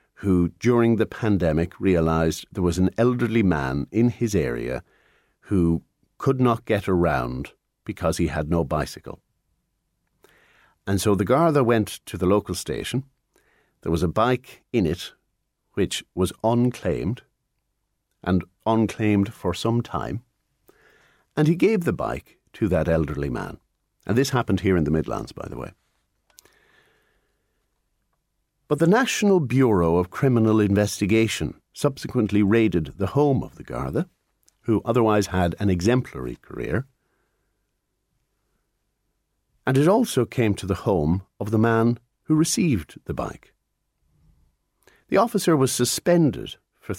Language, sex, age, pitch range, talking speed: English, male, 50-69, 90-125 Hz, 135 wpm